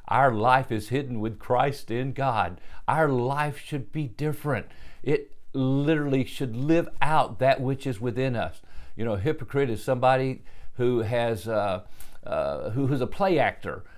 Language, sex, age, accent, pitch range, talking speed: English, male, 50-69, American, 120-155 Hz, 160 wpm